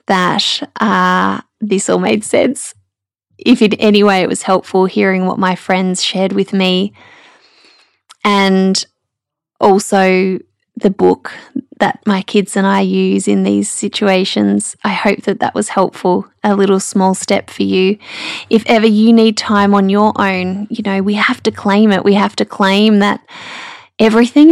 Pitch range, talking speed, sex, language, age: 190-225 Hz, 160 wpm, female, English, 10-29